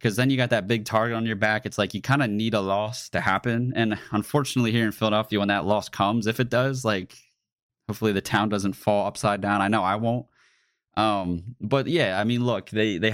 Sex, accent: male, American